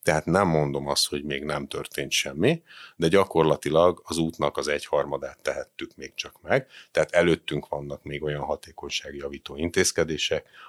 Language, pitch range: Hungarian, 75-100 Hz